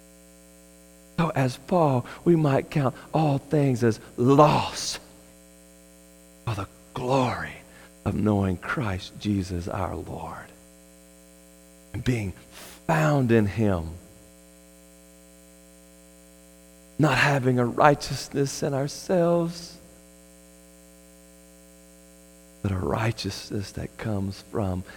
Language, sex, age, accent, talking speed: English, male, 40-59, American, 85 wpm